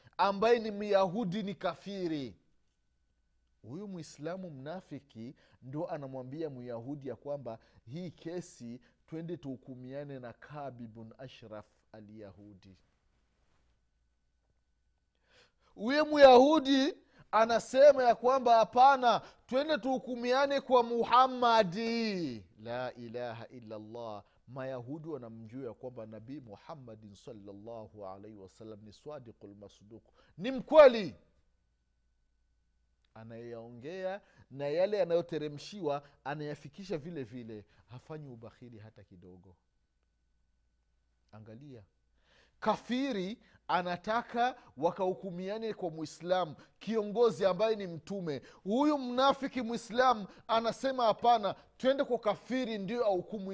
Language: Swahili